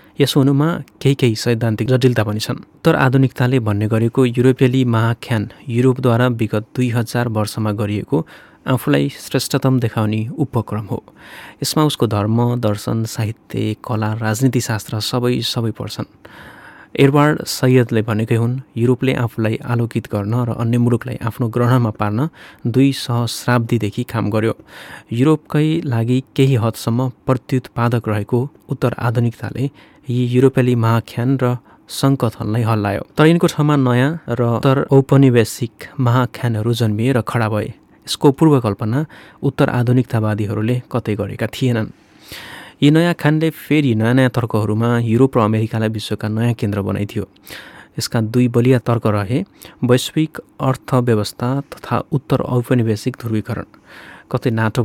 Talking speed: 100 wpm